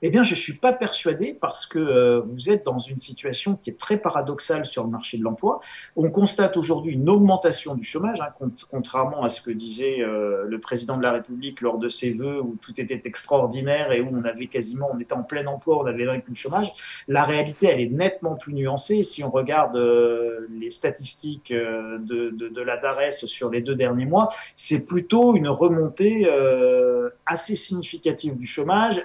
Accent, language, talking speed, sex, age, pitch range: French, French, 205 wpm, male, 40-59, 130-200 Hz